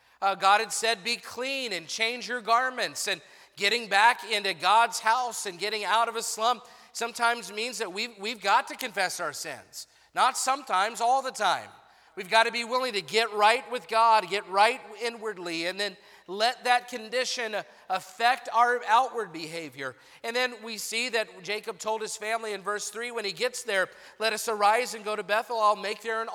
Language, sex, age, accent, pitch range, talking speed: English, male, 40-59, American, 195-235 Hz, 195 wpm